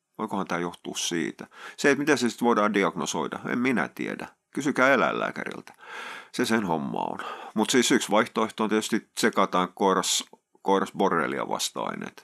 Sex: male